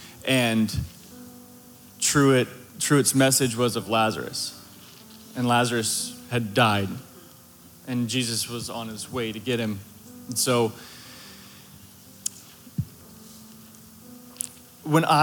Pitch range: 115-140 Hz